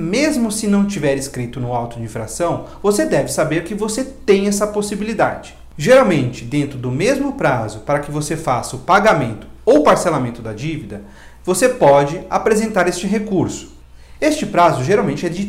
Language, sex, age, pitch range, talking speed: Portuguese, male, 40-59, 130-205 Hz, 165 wpm